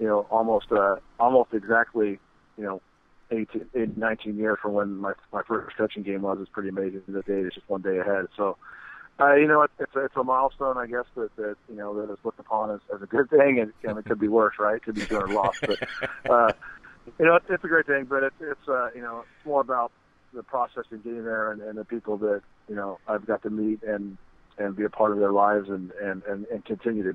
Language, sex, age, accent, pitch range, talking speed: English, male, 40-59, American, 95-110 Hz, 250 wpm